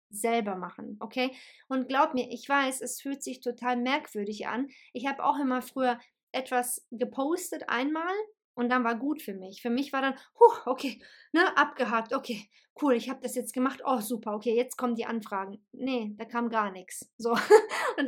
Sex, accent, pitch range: female, German, 245-310 Hz